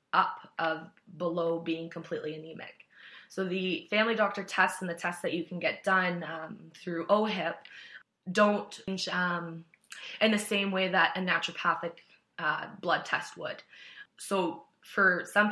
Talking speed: 145 wpm